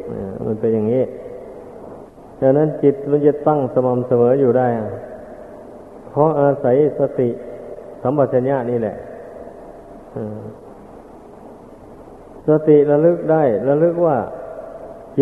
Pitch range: 125-150 Hz